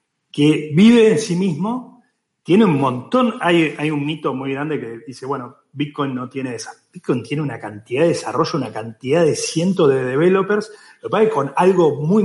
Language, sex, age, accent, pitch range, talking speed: Spanish, male, 30-49, Argentinian, 140-195 Hz, 185 wpm